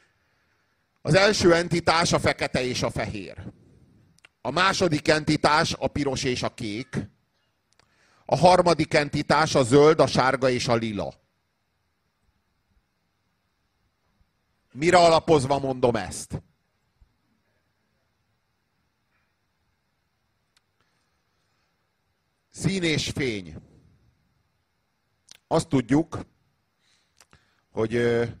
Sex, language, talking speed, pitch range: male, Hungarian, 75 wpm, 100-150 Hz